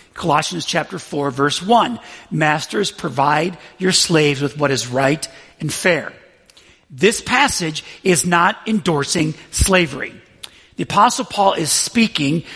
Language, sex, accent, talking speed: English, male, American, 125 wpm